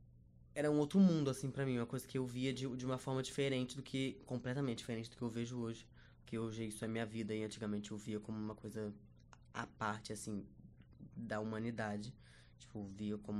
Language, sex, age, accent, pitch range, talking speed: Portuguese, female, 10-29, Brazilian, 105-130 Hz, 210 wpm